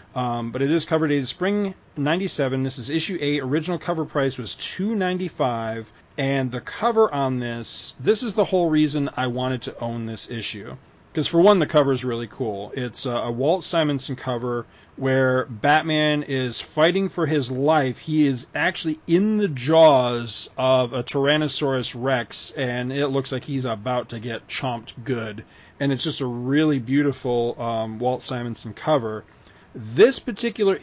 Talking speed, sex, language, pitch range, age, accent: 165 wpm, male, English, 125-160 Hz, 40-59, American